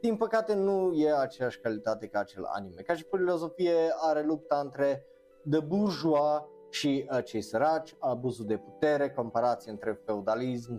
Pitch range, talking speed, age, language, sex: 115-160 Hz, 150 wpm, 20-39, Romanian, male